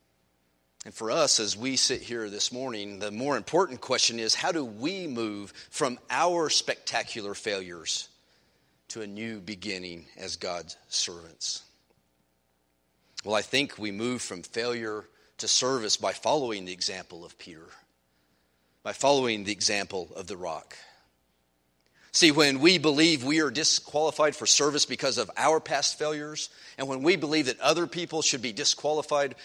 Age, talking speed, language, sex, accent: 40-59, 155 wpm, English, male, American